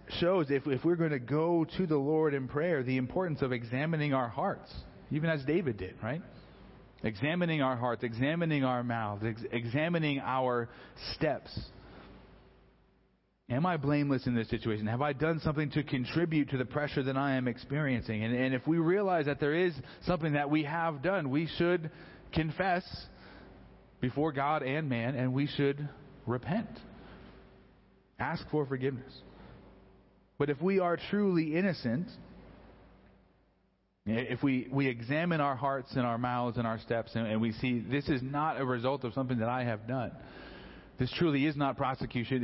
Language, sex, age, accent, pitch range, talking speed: English, male, 40-59, American, 120-155 Hz, 165 wpm